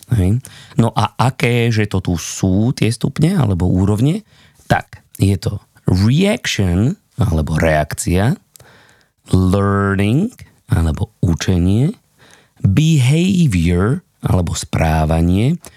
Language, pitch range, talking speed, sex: Slovak, 95-135 Hz, 90 wpm, male